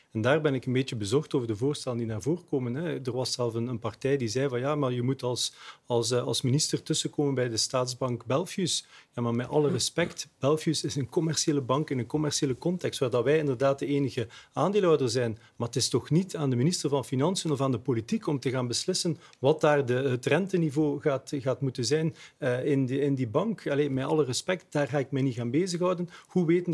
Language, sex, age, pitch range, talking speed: Dutch, male, 40-59, 125-155 Hz, 230 wpm